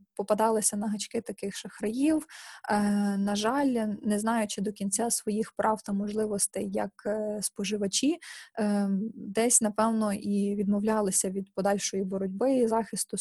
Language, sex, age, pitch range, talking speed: Ukrainian, female, 20-39, 200-220 Hz, 120 wpm